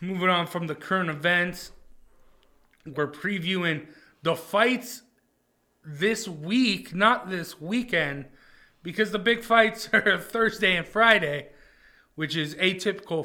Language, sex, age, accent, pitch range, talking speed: English, male, 30-49, American, 155-200 Hz, 120 wpm